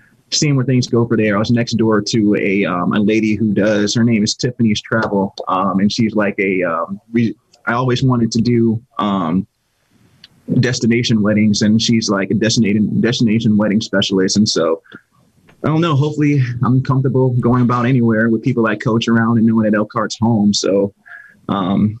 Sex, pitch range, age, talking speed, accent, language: male, 105-120 Hz, 20-39, 185 wpm, American, English